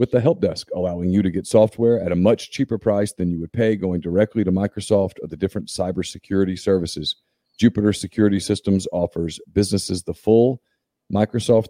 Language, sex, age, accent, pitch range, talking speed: English, male, 40-59, American, 95-115 Hz, 180 wpm